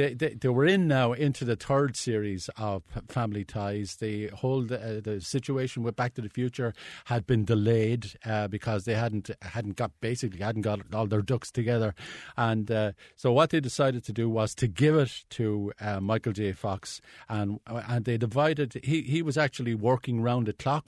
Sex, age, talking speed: male, 50-69, 195 wpm